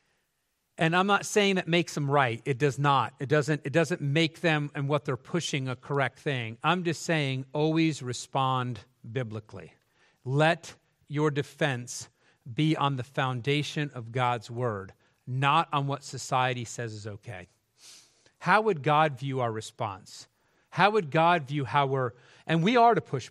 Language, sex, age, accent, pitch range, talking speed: English, male, 40-59, American, 125-160 Hz, 165 wpm